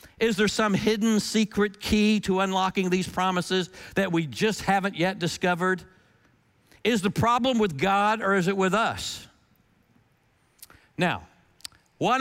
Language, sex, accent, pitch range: English, male, American, 135-195 Hz